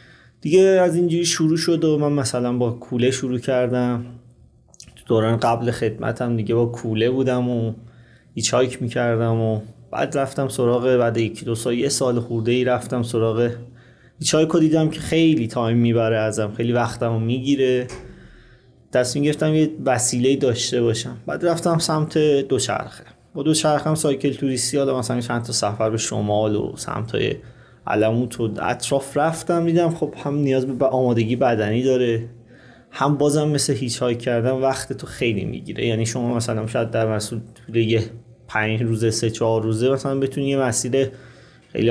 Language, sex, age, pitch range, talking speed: Persian, male, 30-49, 115-135 Hz, 160 wpm